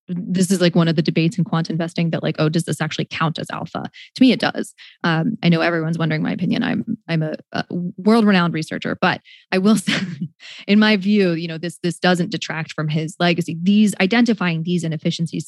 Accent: American